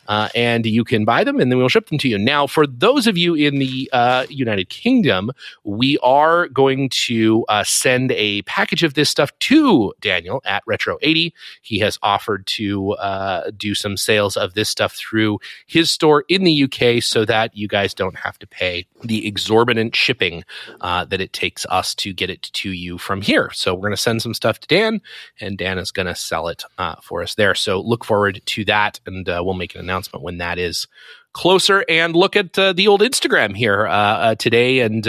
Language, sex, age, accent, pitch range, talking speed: English, male, 30-49, American, 105-145 Hz, 215 wpm